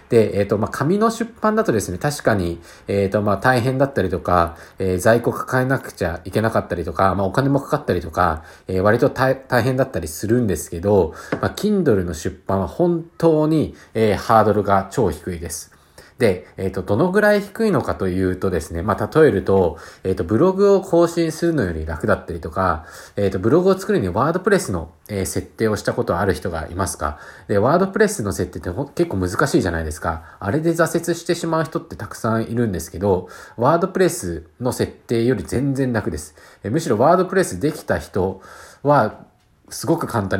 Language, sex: Japanese, male